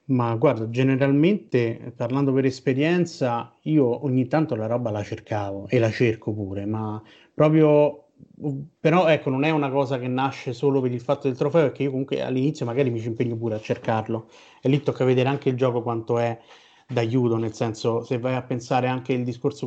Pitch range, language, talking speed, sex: 120-140 Hz, Italian, 190 wpm, male